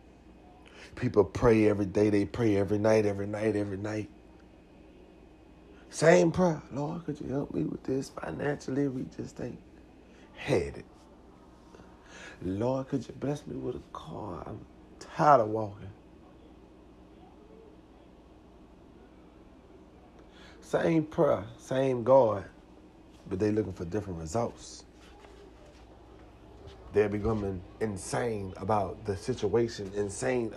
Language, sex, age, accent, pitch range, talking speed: English, male, 40-59, American, 90-125 Hz, 110 wpm